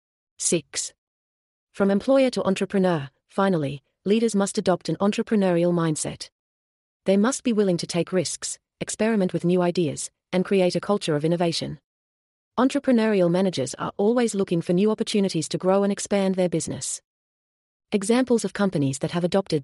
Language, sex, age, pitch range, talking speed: English, female, 30-49, 155-200 Hz, 150 wpm